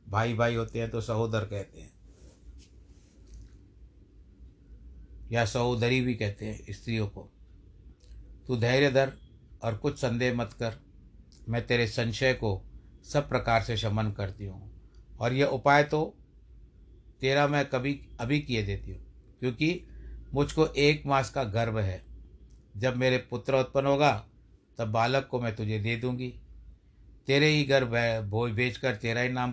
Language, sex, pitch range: Hindi, male, 110-125 Hz